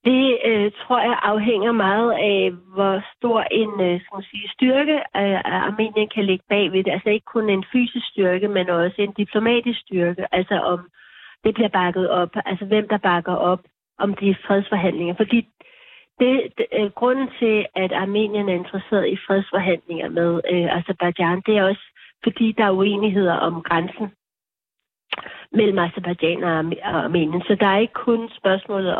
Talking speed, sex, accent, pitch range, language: 160 wpm, female, native, 180-215 Hz, Danish